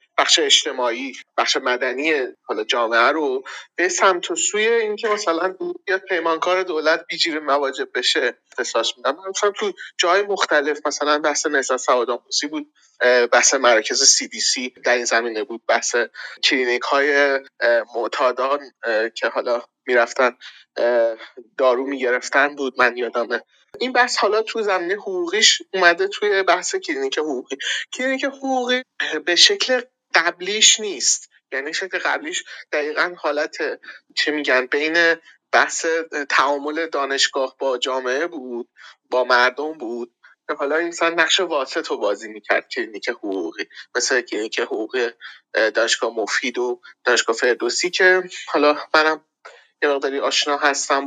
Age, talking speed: 30-49, 125 wpm